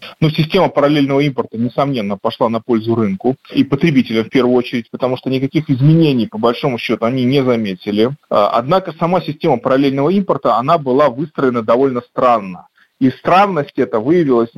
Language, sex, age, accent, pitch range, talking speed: Russian, male, 30-49, native, 125-180 Hz, 155 wpm